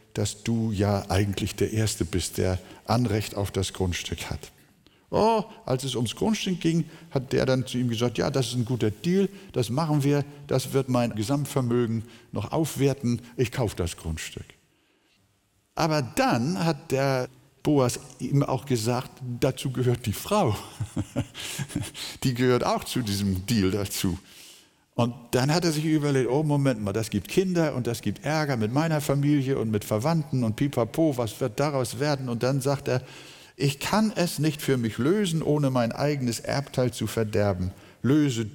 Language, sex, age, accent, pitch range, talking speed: German, male, 60-79, German, 105-140 Hz, 170 wpm